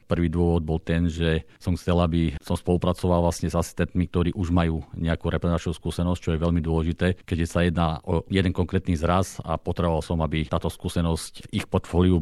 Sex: male